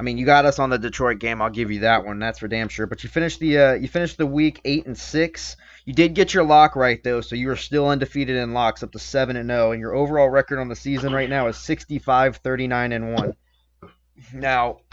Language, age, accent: English, 20-39, American